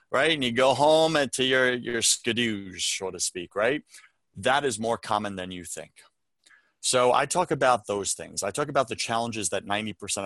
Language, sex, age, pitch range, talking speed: English, male, 30-49, 100-130 Hz, 195 wpm